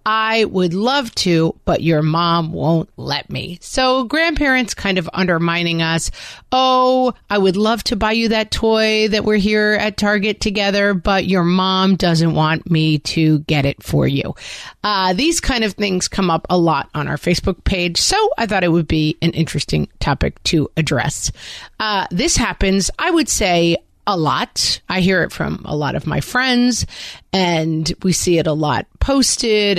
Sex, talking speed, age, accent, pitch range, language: female, 180 wpm, 40-59, American, 165-225 Hz, English